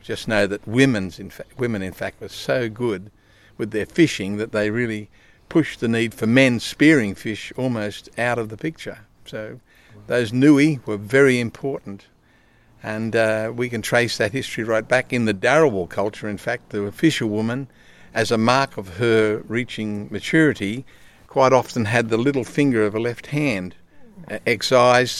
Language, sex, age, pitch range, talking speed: English, male, 50-69, 105-130 Hz, 170 wpm